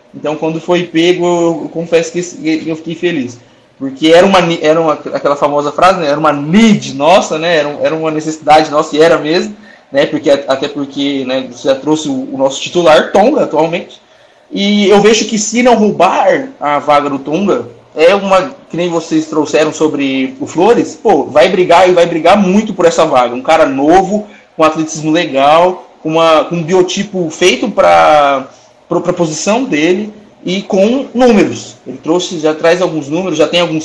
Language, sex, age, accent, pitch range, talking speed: Portuguese, male, 20-39, Brazilian, 155-185 Hz, 180 wpm